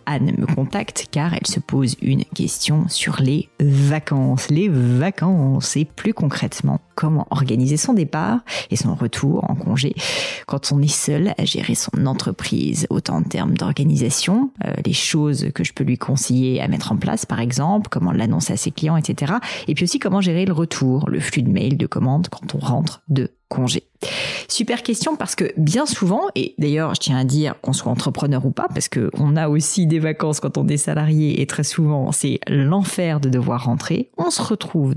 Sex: female